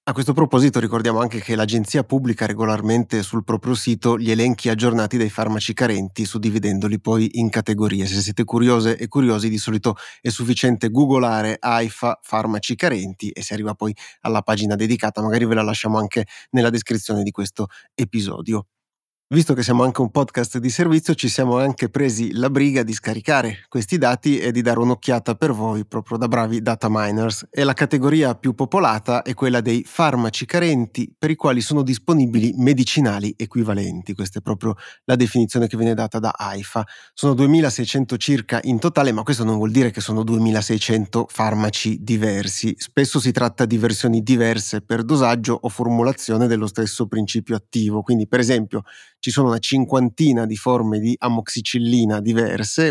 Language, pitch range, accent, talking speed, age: Italian, 110-130 Hz, native, 170 wpm, 30-49